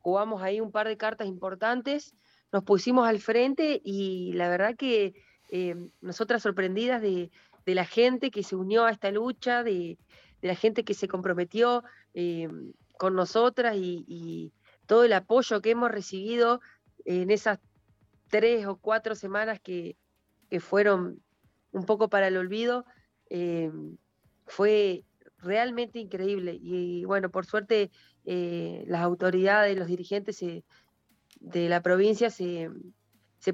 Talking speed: 140 wpm